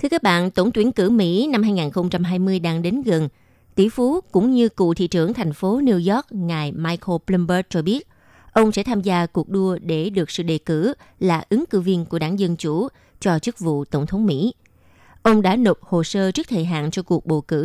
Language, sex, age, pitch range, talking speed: Vietnamese, female, 20-39, 160-205 Hz, 220 wpm